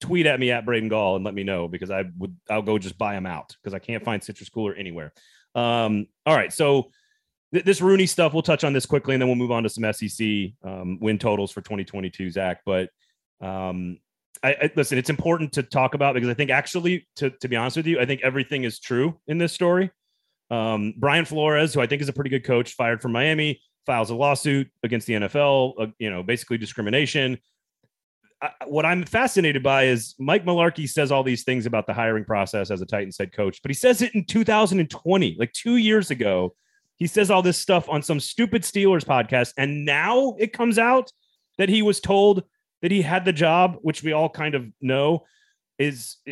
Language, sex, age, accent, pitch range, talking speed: English, male, 30-49, American, 110-165 Hz, 215 wpm